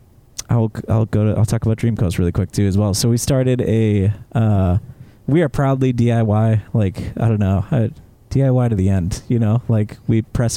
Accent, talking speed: American, 205 wpm